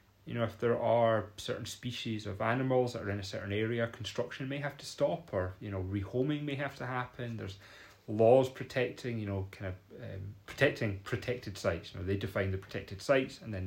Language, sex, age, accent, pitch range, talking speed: English, male, 30-49, British, 95-115 Hz, 210 wpm